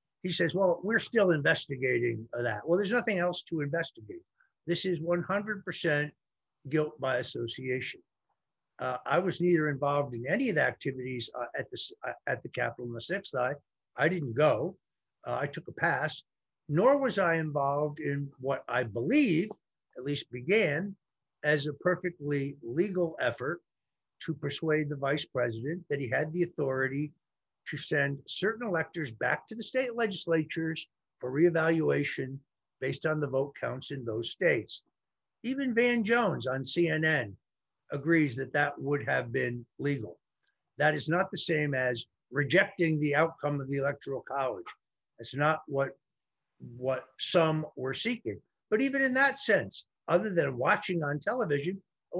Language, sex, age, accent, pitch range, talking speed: English, male, 50-69, American, 135-175 Hz, 155 wpm